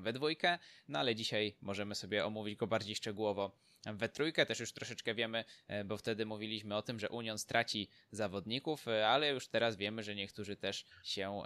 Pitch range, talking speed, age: 105-120 Hz, 180 wpm, 20-39